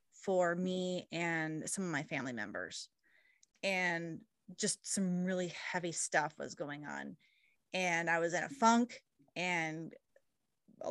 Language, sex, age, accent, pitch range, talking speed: English, female, 20-39, American, 180-215 Hz, 140 wpm